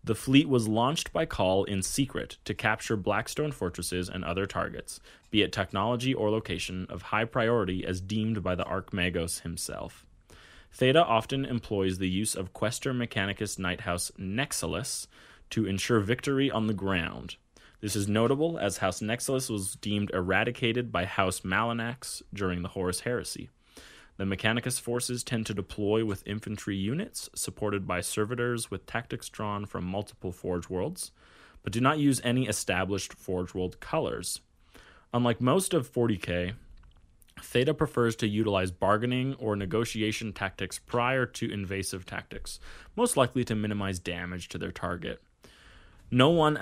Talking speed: 150 wpm